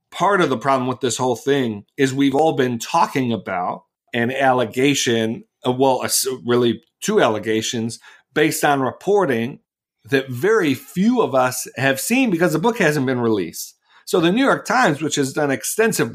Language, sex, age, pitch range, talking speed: English, male, 40-59, 120-150 Hz, 165 wpm